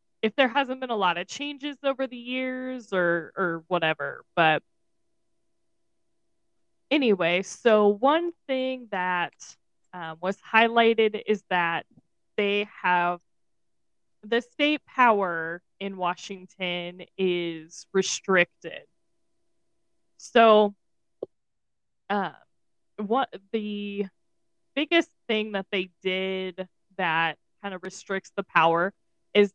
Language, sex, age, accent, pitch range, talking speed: English, female, 10-29, American, 185-245 Hz, 100 wpm